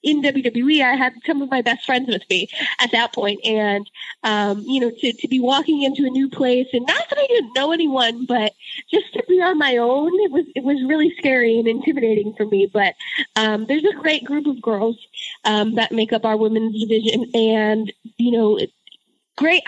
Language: English